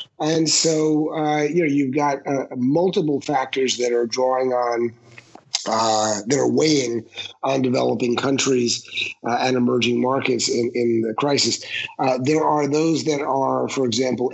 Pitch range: 125-145 Hz